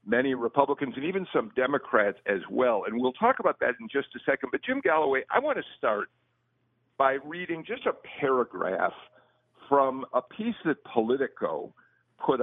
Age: 50-69